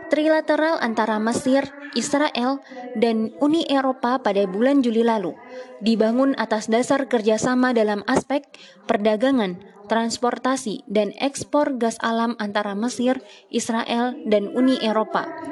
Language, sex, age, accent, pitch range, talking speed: Indonesian, female, 20-39, native, 220-275 Hz, 110 wpm